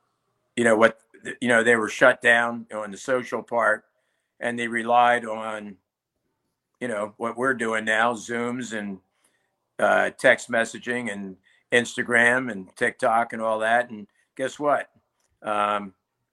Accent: American